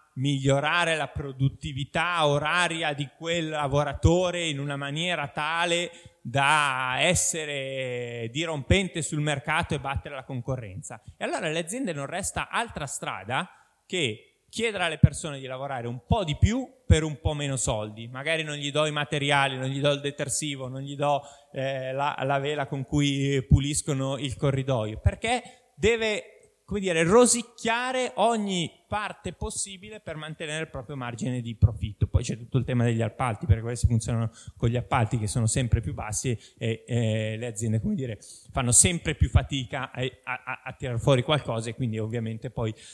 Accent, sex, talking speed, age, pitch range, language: native, male, 165 wpm, 20-39, 120-160 Hz, Italian